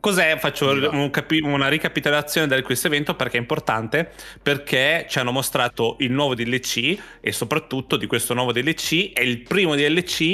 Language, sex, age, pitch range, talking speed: Italian, male, 20-39, 120-155 Hz, 170 wpm